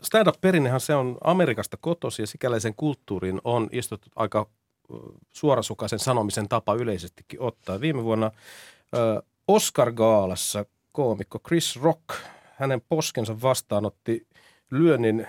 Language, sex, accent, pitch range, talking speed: Finnish, male, native, 110-145 Hz, 105 wpm